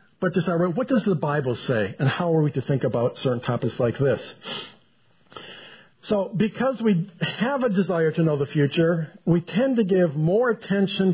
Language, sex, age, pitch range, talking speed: English, male, 50-69, 160-205 Hz, 180 wpm